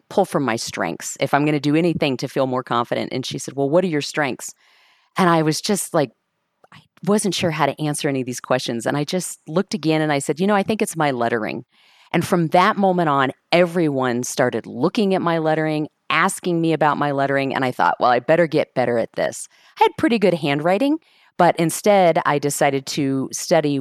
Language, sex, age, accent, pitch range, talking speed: English, female, 40-59, American, 135-175 Hz, 225 wpm